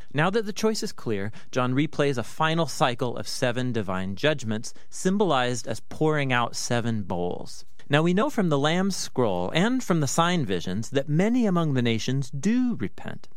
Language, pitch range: English, 115-160 Hz